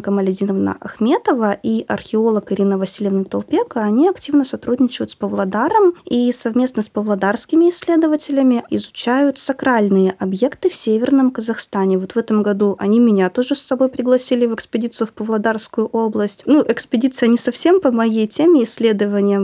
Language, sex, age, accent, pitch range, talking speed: Russian, female, 20-39, native, 200-250 Hz, 140 wpm